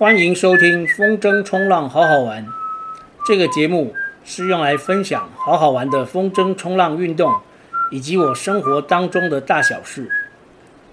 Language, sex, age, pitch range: Chinese, male, 50-69, 145-200 Hz